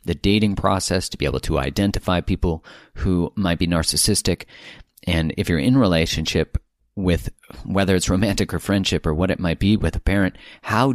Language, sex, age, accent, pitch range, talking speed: English, male, 30-49, American, 85-105 Hz, 180 wpm